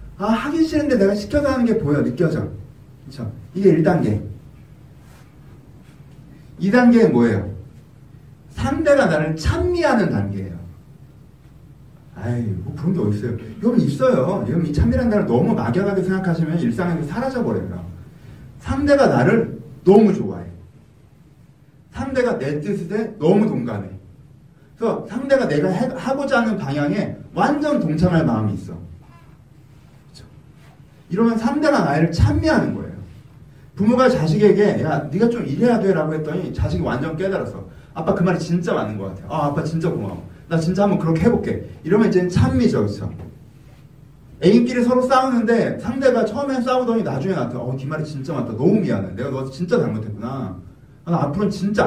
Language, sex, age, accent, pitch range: Korean, male, 40-59, native, 135-215 Hz